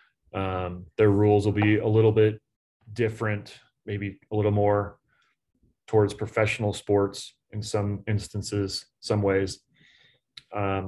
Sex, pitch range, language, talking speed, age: male, 100-110 Hz, English, 120 wpm, 30-49